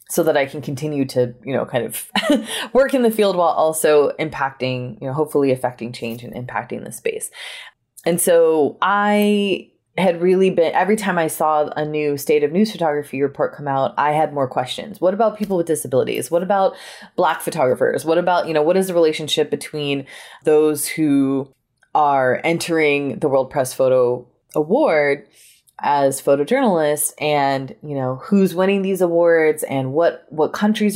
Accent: American